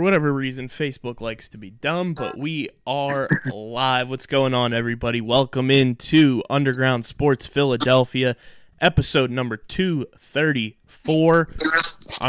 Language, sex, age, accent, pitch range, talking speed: English, male, 20-39, American, 120-145 Hz, 110 wpm